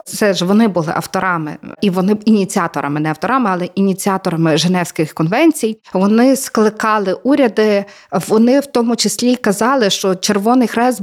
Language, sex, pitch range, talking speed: Ukrainian, female, 185-240 Hz, 135 wpm